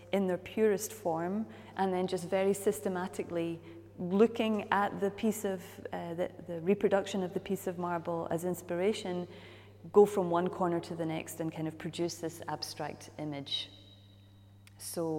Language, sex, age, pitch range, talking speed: English, female, 30-49, 160-200 Hz, 160 wpm